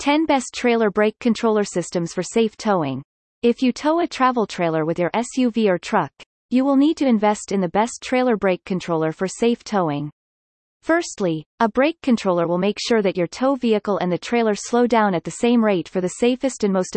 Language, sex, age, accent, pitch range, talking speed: English, female, 30-49, American, 180-245 Hz, 210 wpm